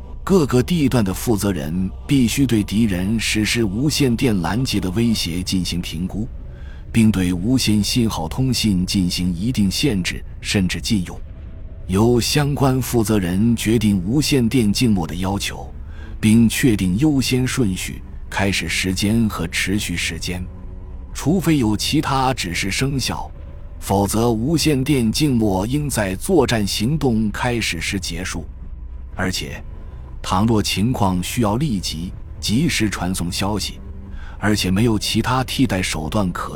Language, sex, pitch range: Chinese, male, 85-115 Hz